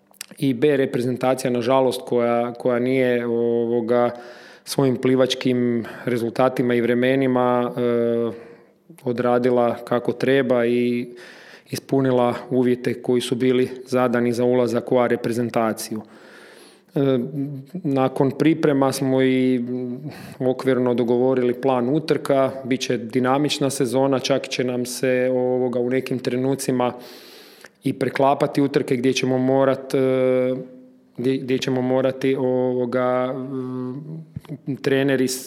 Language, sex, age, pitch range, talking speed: Croatian, male, 30-49, 125-135 Hz, 100 wpm